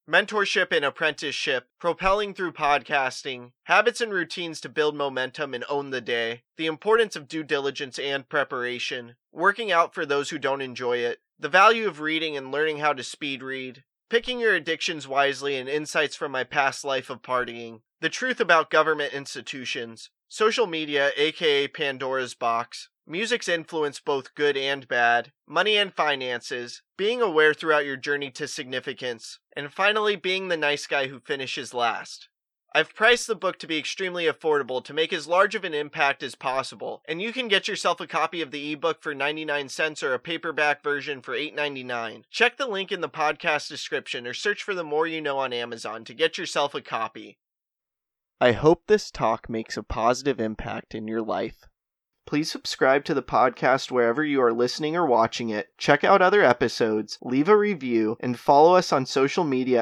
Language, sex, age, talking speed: English, male, 20-39, 180 wpm